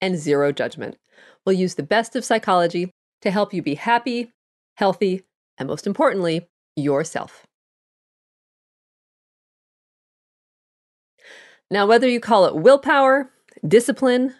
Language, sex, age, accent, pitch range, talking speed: English, female, 40-59, American, 170-240 Hz, 110 wpm